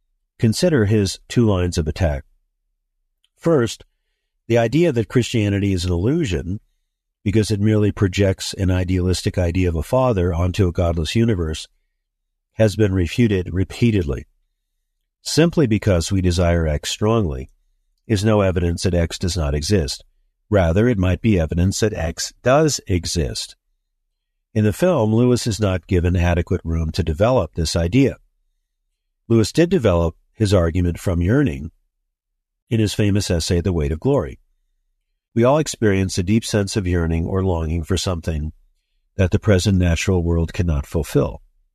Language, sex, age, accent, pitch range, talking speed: English, male, 50-69, American, 85-105 Hz, 145 wpm